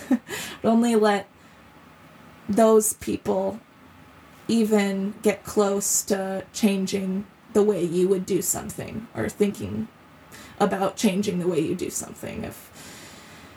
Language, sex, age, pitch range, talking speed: English, female, 20-39, 200-220 Hz, 115 wpm